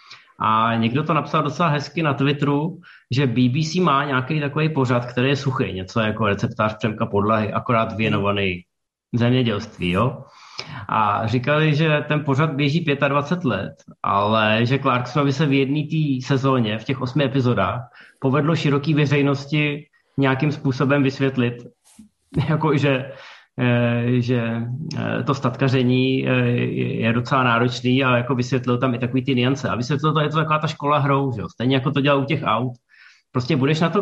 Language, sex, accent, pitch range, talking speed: Czech, male, native, 120-145 Hz, 155 wpm